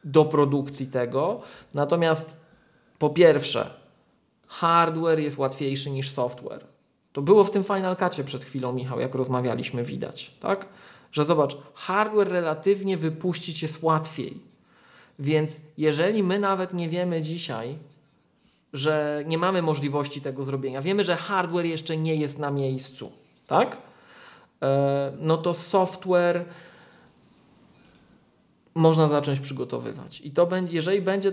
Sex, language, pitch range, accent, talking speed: male, Polish, 140-180 Hz, native, 125 wpm